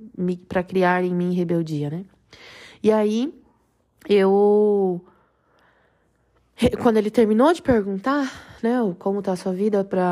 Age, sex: 20-39, female